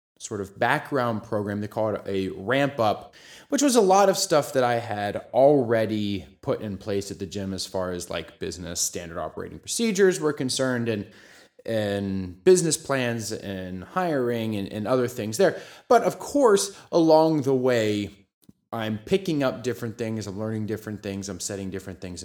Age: 20-39